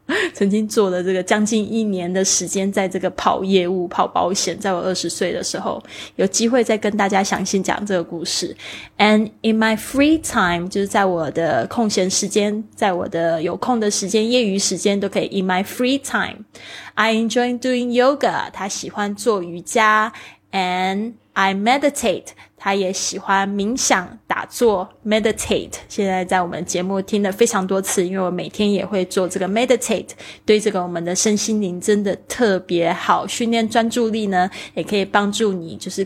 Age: 20-39